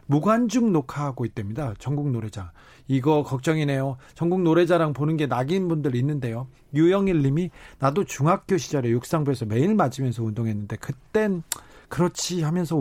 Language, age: Korean, 40-59